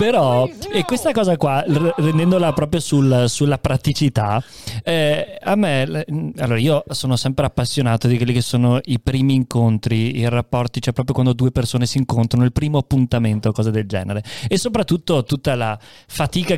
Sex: male